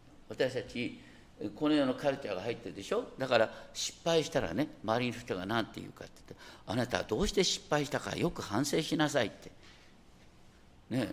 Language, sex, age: Japanese, male, 50-69